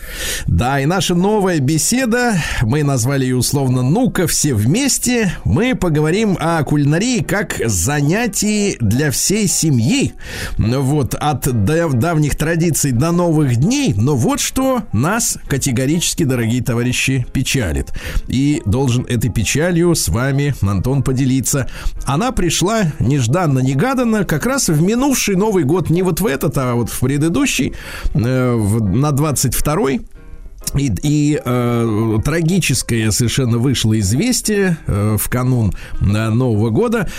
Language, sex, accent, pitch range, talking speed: Russian, male, native, 120-180 Hz, 125 wpm